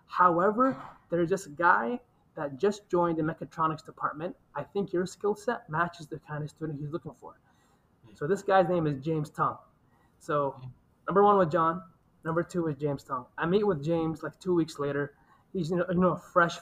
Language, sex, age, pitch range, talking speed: English, male, 20-39, 150-185 Hz, 190 wpm